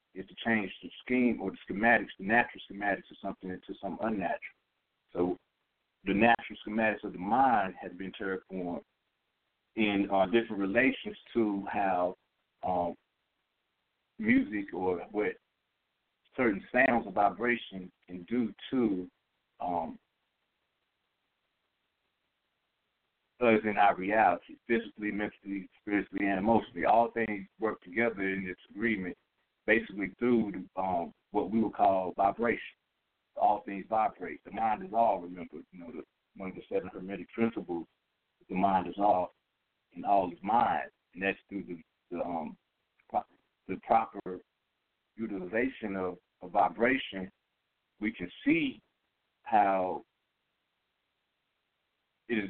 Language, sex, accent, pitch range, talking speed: English, male, American, 95-115 Hz, 130 wpm